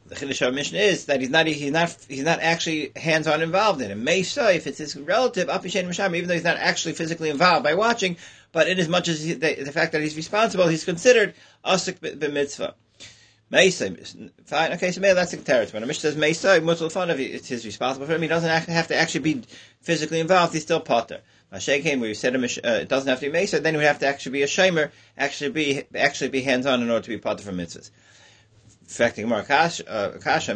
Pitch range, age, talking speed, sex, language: 130-170 Hz, 40-59, 230 wpm, male, English